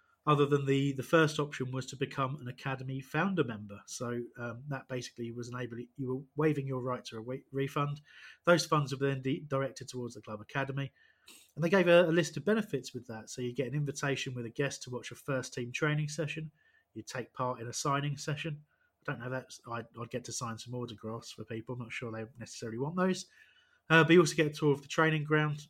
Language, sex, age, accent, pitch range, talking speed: English, male, 30-49, British, 125-160 Hz, 235 wpm